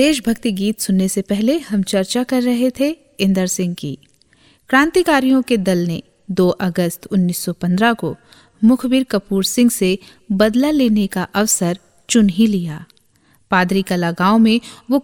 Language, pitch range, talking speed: Hindi, 180-230 Hz, 150 wpm